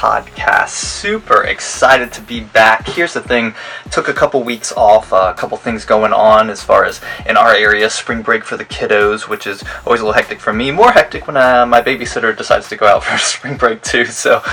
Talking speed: 220 wpm